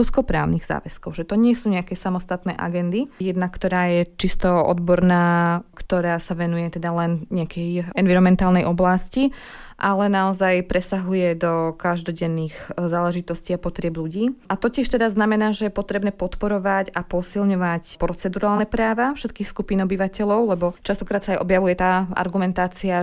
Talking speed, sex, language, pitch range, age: 140 wpm, female, Slovak, 180-205 Hz, 20-39